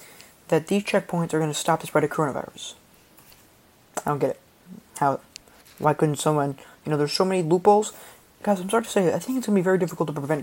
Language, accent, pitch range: English, American, 150-190 Hz